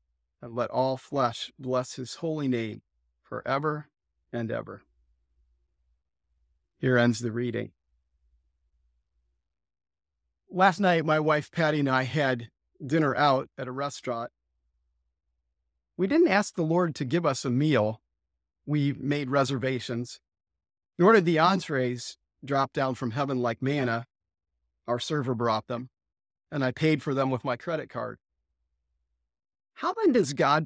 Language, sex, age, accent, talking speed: English, male, 40-59, American, 135 wpm